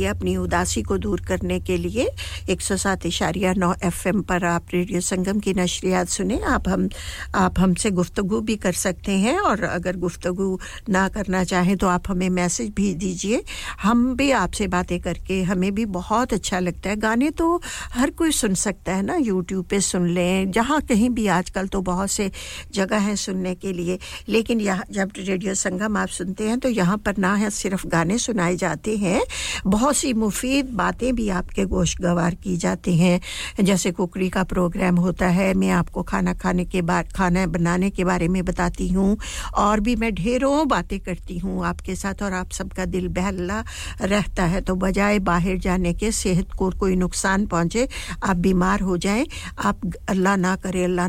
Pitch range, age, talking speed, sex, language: 180-205 Hz, 60-79, 165 wpm, female, English